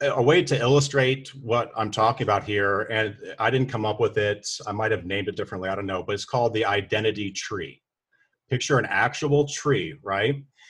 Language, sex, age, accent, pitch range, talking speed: English, male, 40-59, American, 105-140 Hz, 195 wpm